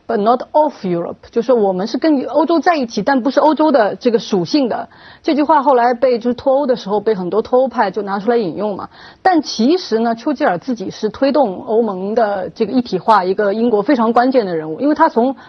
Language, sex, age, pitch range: Chinese, female, 30-49, 205-285 Hz